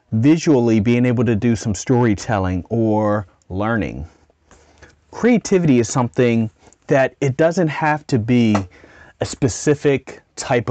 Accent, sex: American, male